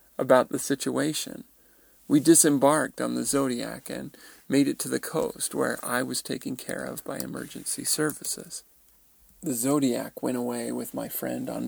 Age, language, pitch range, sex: 40-59, English, 120-140 Hz, male